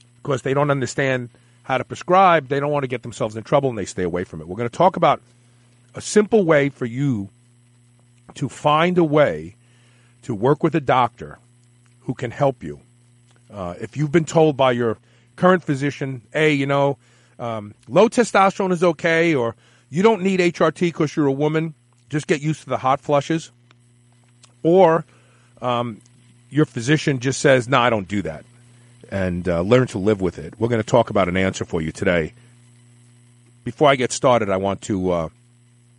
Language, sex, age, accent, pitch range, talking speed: English, male, 40-59, American, 120-140 Hz, 185 wpm